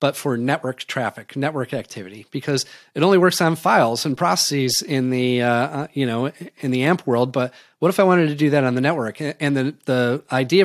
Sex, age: male, 30-49